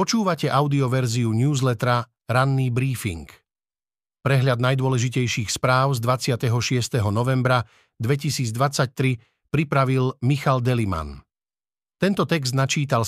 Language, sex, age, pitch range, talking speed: Slovak, male, 50-69, 120-155 Hz, 85 wpm